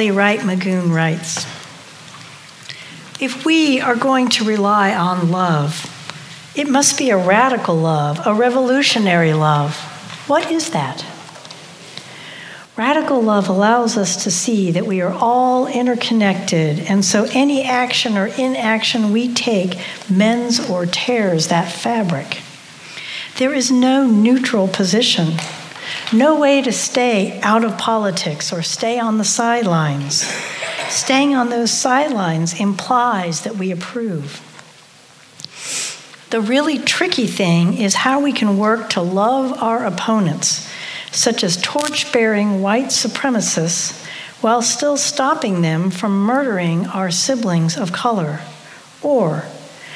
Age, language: 60-79, English